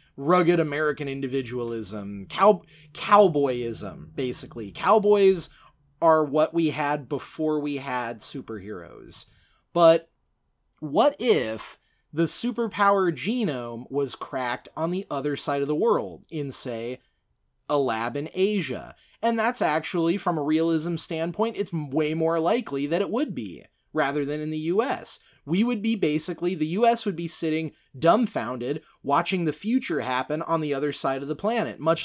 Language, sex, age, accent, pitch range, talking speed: English, male, 30-49, American, 140-185 Hz, 145 wpm